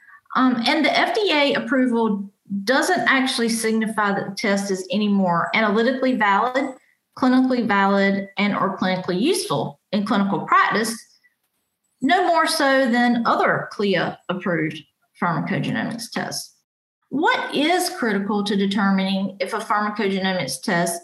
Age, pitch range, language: 40-59, 195-260 Hz, English